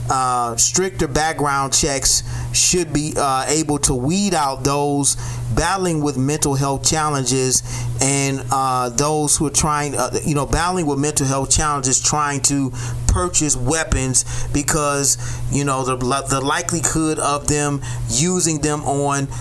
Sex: male